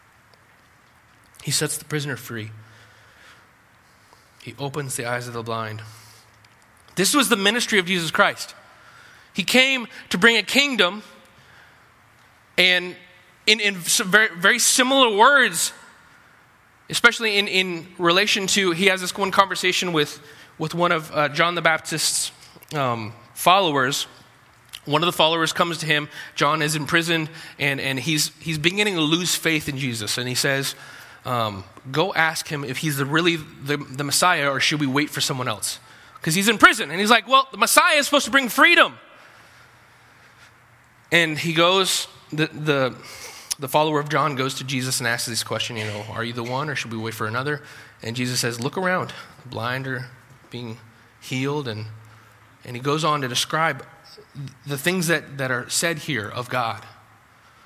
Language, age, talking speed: English, 20-39, 170 wpm